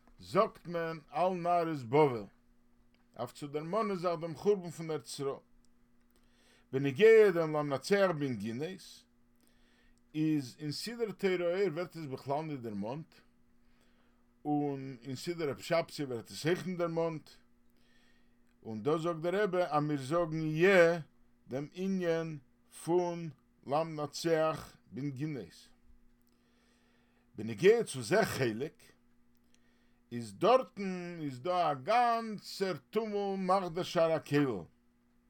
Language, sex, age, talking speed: English, male, 50-69, 120 wpm